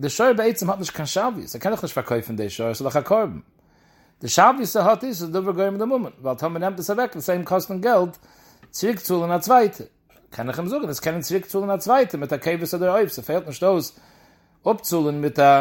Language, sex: English, male